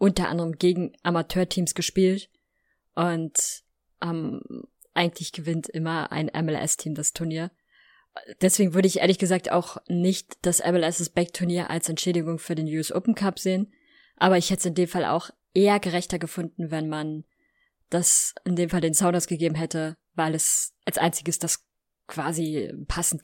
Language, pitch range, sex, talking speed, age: German, 165-195 Hz, female, 150 wpm, 20-39